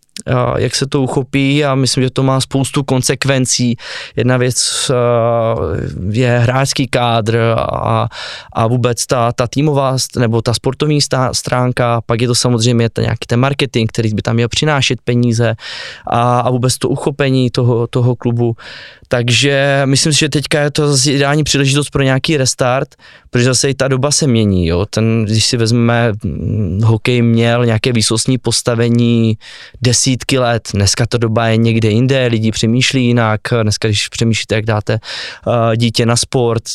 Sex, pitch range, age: male, 115-135 Hz, 20-39